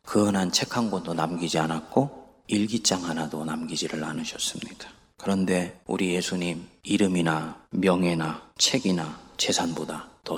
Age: 40-59